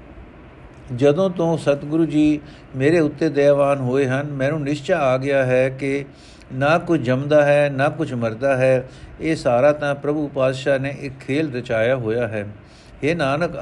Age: 60-79